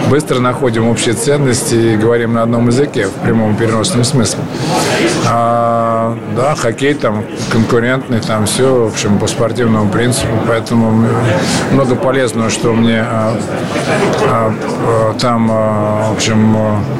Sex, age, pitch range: male, 20-39, 110-125 Hz